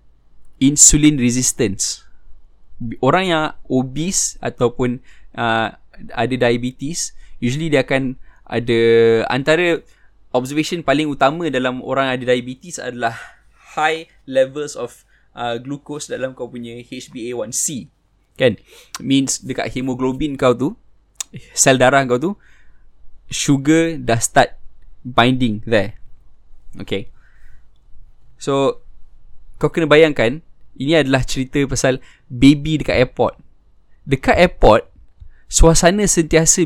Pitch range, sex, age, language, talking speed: 120-155 Hz, male, 20-39, Malay, 100 wpm